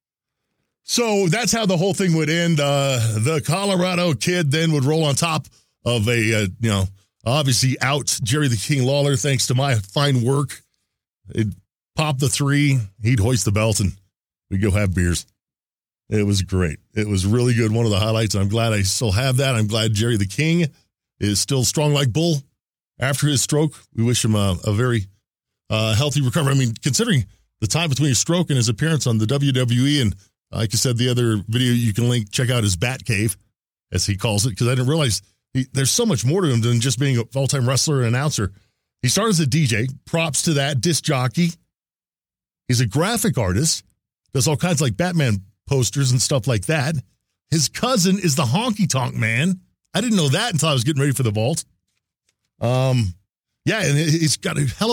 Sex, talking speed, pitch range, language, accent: male, 205 wpm, 110-150 Hz, English, American